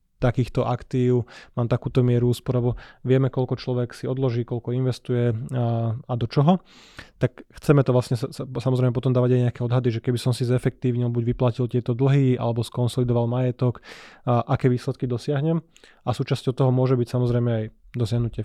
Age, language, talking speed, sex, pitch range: 20-39, Slovak, 160 wpm, male, 120-130 Hz